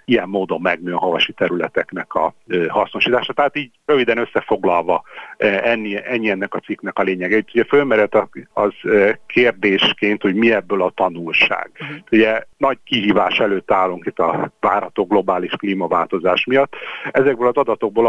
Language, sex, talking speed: Hungarian, male, 135 wpm